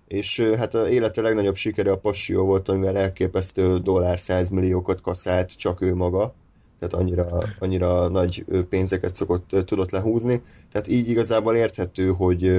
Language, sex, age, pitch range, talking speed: Hungarian, male, 30-49, 90-105 Hz, 145 wpm